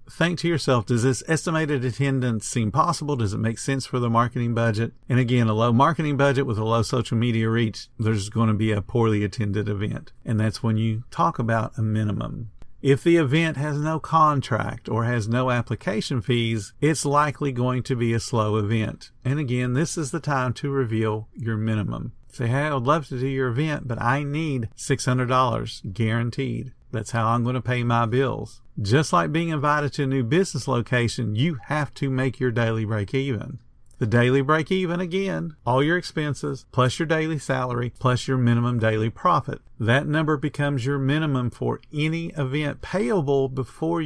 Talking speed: 190 wpm